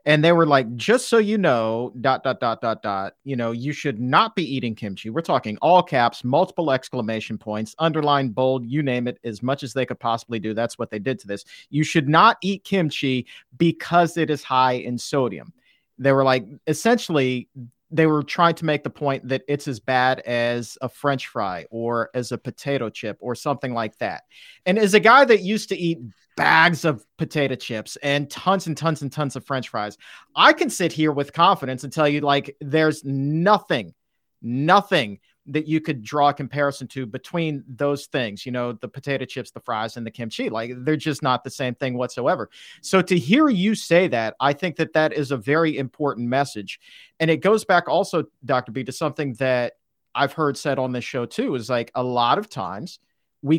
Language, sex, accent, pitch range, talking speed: English, male, American, 125-160 Hz, 210 wpm